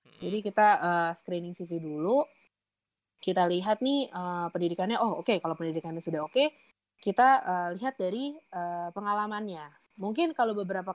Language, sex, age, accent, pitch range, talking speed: Indonesian, female, 20-39, native, 165-215 Hz, 155 wpm